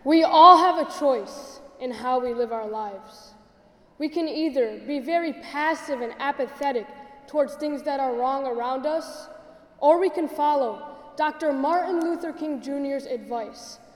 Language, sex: English, female